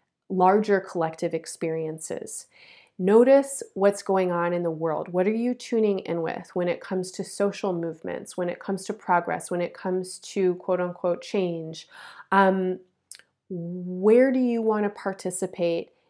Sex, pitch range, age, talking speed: female, 175-200 Hz, 30-49, 155 wpm